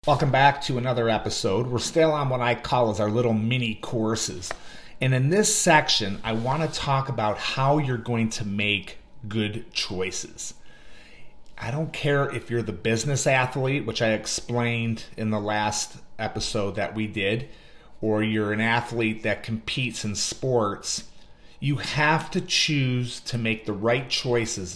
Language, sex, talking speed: English, male, 160 wpm